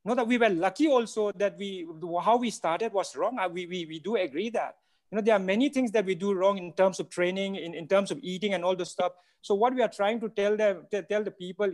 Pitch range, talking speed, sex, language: 185-230 Hz, 275 wpm, male, English